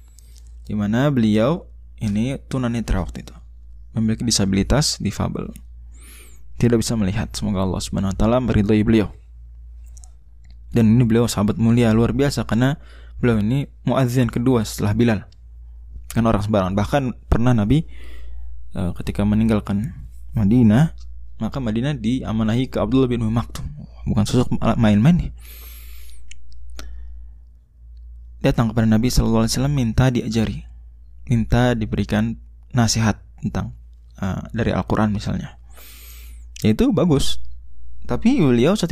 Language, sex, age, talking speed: Indonesian, male, 20-39, 110 wpm